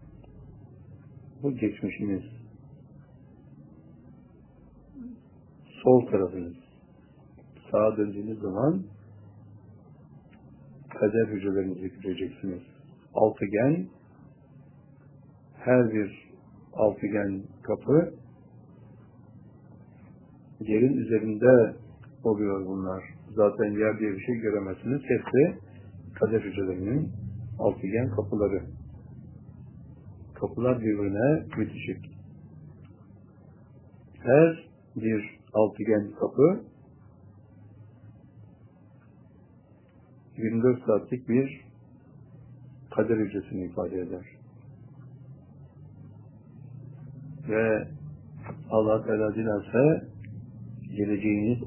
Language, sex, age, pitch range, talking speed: Turkish, male, 60-79, 100-130 Hz, 55 wpm